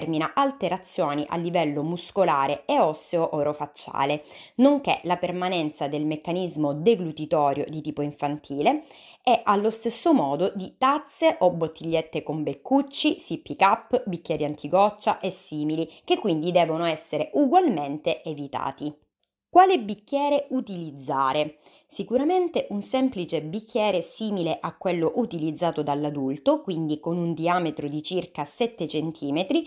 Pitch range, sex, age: 155-220 Hz, female, 20-39